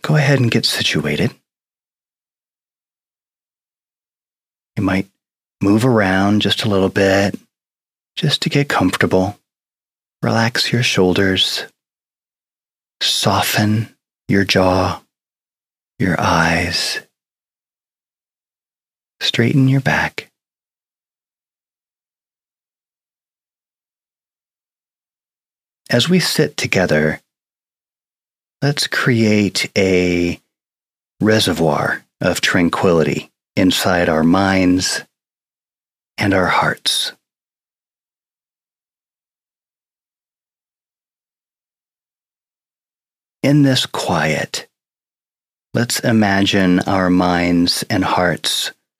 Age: 30-49